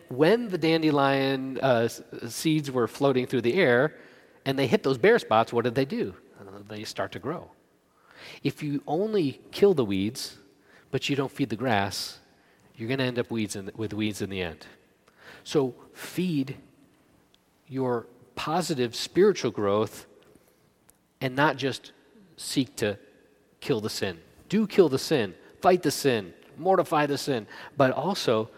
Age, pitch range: 40-59, 110-140 Hz